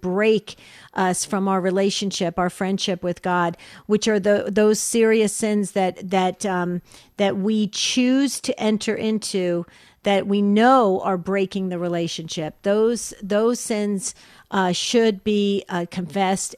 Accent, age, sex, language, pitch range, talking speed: American, 50-69, female, English, 185-215 Hz, 145 wpm